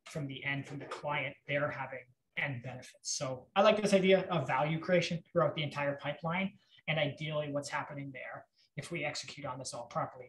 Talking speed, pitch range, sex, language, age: 200 wpm, 135-175 Hz, male, English, 20-39